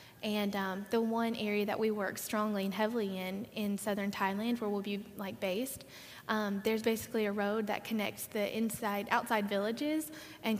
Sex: female